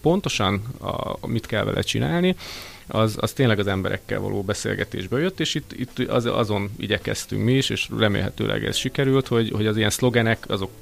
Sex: male